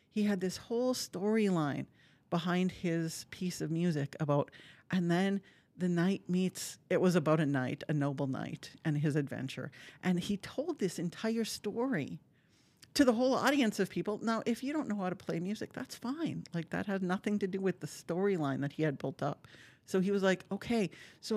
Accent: American